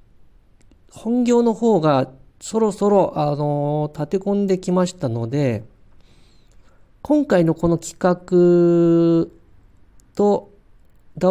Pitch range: 120-185 Hz